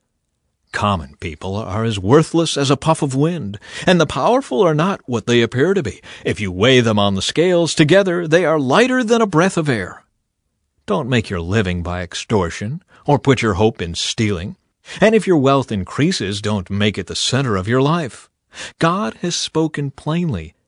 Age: 50-69